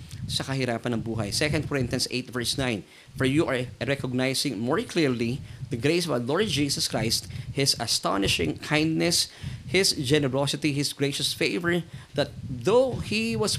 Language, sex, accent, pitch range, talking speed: Filipino, male, native, 125-155 Hz, 150 wpm